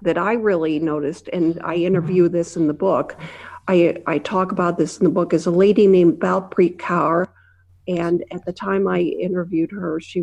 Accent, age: American, 50-69